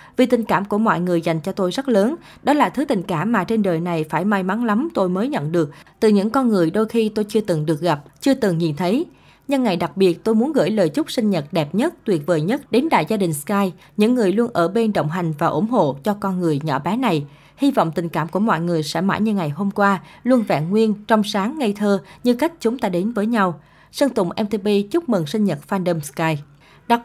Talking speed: 260 wpm